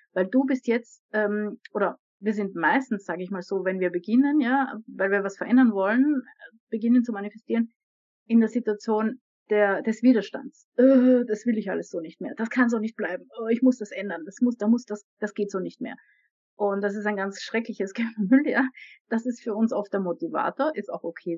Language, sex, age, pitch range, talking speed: German, female, 30-49, 185-230 Hz, 220 wpm